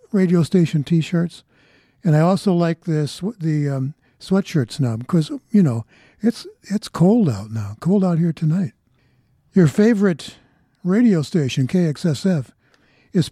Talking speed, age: 135 wpm, 60-79